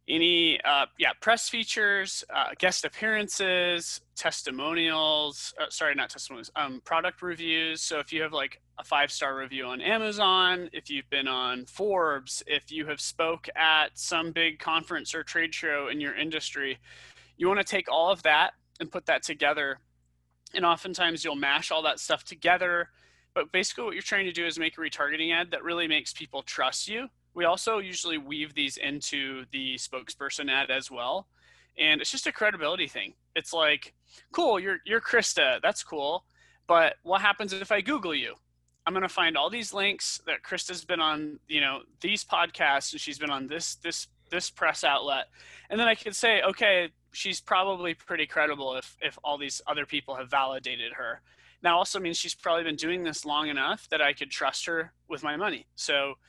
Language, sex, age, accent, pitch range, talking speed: English, male, 20-39, American, 140-185 Hz, 185 wpm